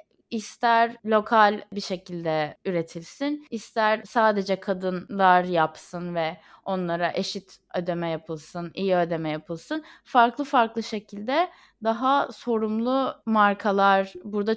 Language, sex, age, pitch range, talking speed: Turkish, female, 20-39, 185-260 Hz, 100 wpm